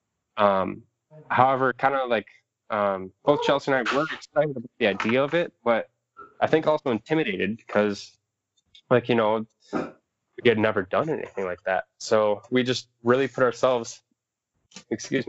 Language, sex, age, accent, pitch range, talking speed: English, male, 20-39, American, 100-130 Hz, 155 wpm